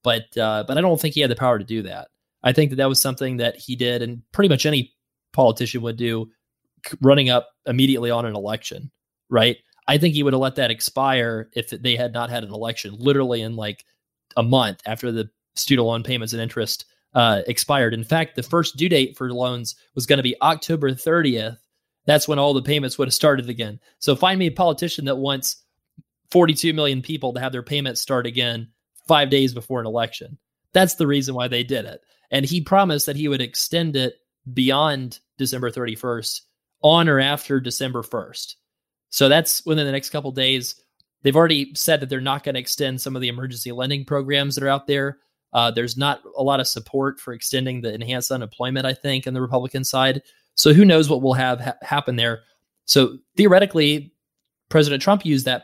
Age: 30-49